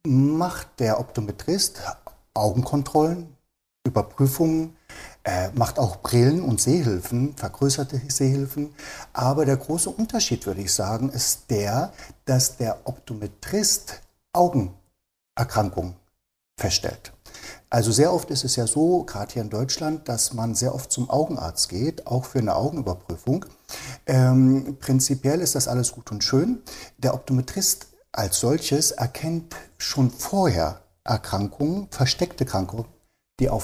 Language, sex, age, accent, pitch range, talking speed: German, male, 60-79, German, 110-140 Hz, 125 wpm